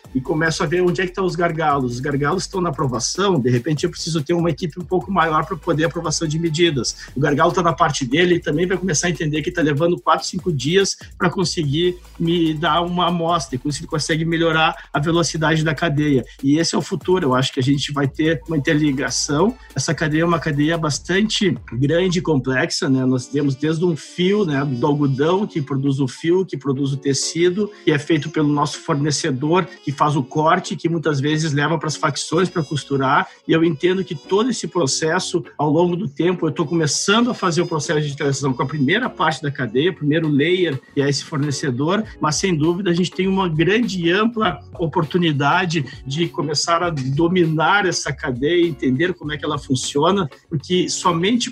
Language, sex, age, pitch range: English, male, 50-69, 145-175 Hz